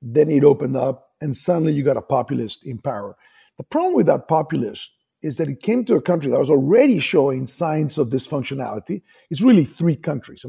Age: 50-69